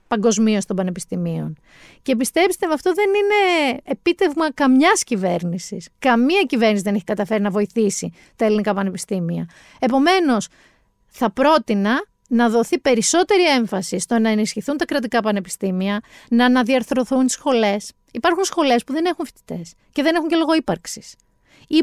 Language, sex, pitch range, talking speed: Greek, female, 210-305 Hz, 145 wpm